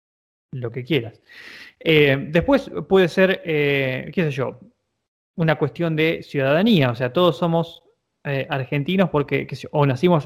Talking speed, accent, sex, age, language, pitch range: 145 wpm, Argentinian, male, 20-39, Spanish, 135-180 Hz